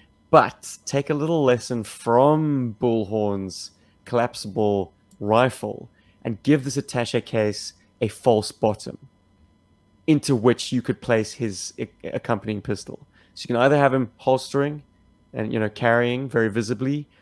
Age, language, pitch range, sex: 30-49, English, 105-125 Hz, male